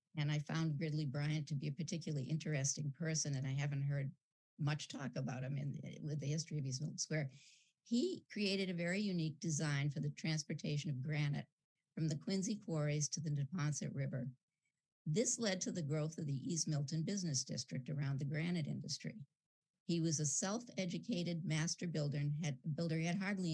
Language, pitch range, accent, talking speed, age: English, 145-165 Hz, American, 190 wpm, 50-69